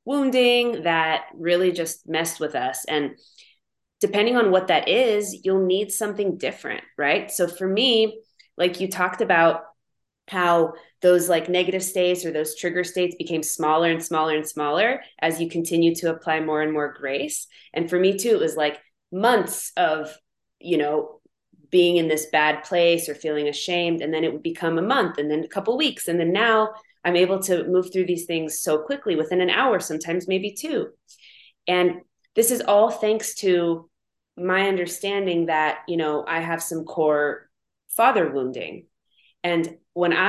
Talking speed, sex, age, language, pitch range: 175 wpm, female, 20-39, English, 160-210 Hz